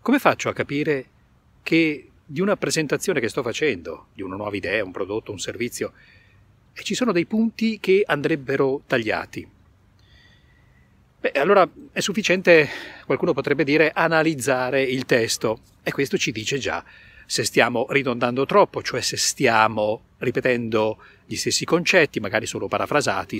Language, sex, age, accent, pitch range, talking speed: Italian, male, 40-59, native, 110-180 Hz, 140 wpm